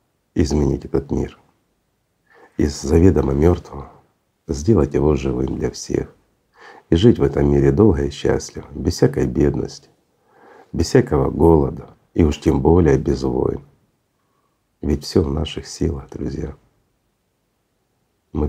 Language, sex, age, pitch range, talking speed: Russian, male, 60-79, 70-85 Hz, 125 wpm